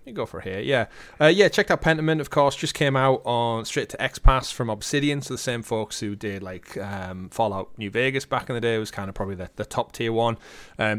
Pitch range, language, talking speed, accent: 110-150 Hz, English, 275 wpm, British